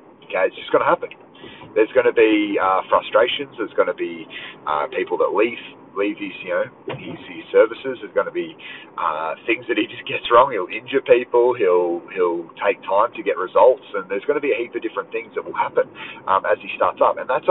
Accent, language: Australian, English